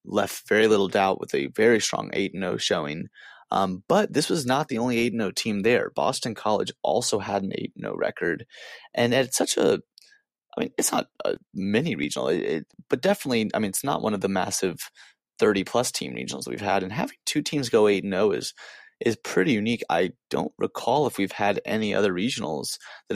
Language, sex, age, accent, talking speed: English, male, 30-49, American, 200 wpm